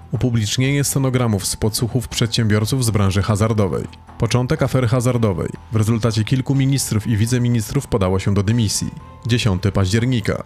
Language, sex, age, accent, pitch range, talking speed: Polish, male, 30-49, native, 105-130 Hz, 130 wpm